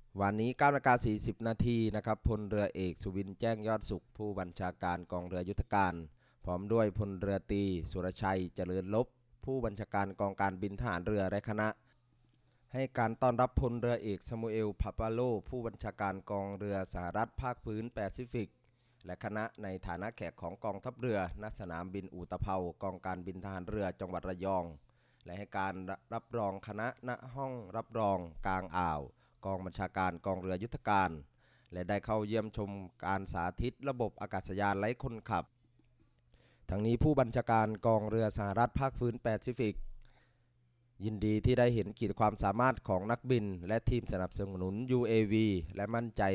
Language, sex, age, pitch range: Thai, male, 20-39, 95-115 Hz